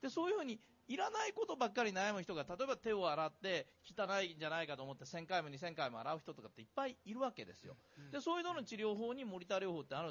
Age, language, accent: 40-59, Japanese, native